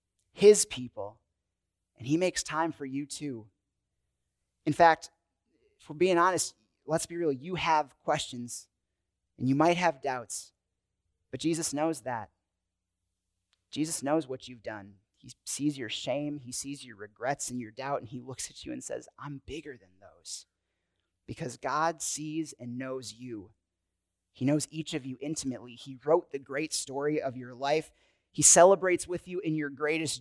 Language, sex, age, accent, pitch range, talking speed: English, male, 30-49, American, 115-160 Hz, 165 wpm